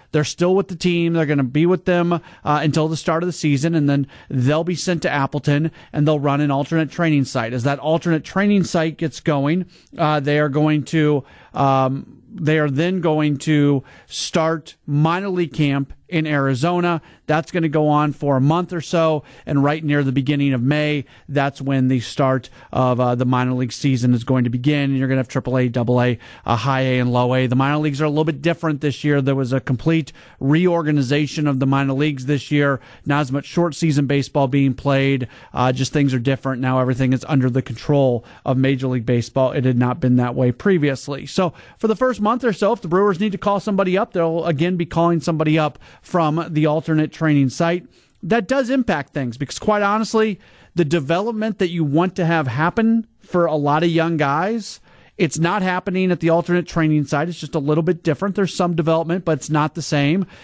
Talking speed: 215 wpm